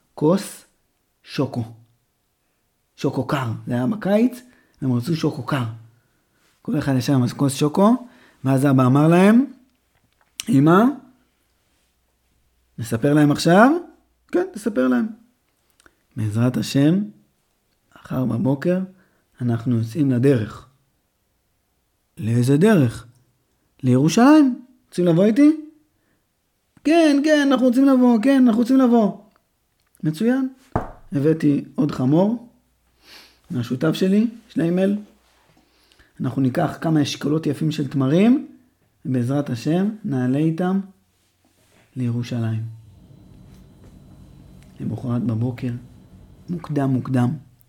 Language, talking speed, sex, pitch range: Hebrew, 90 wpm, male, 125-195 Hz